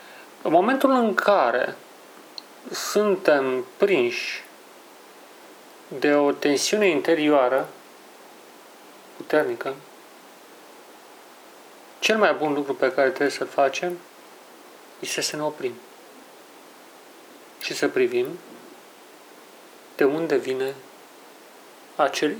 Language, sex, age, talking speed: Romanian, male, 40-59, 85 wpm